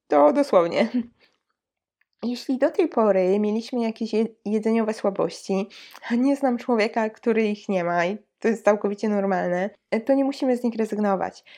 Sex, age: female, 20-39